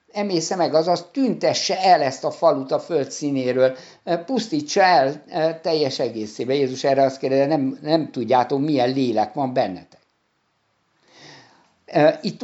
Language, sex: Hungarian, male